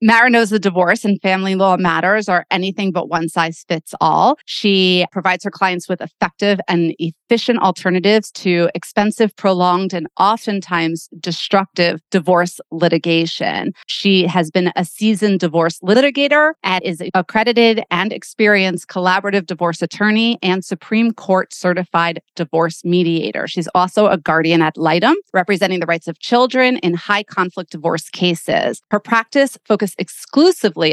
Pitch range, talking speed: 170-215 Hz, 145 wpm